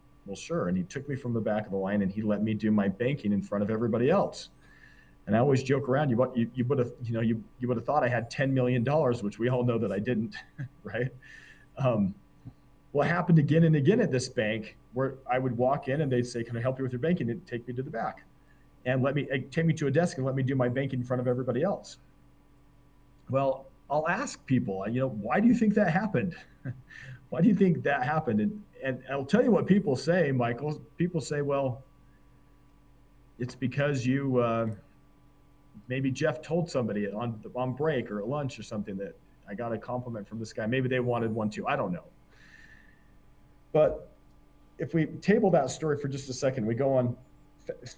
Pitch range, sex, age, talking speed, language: 120-145 Hz, male, 40-59, 225 wpm, English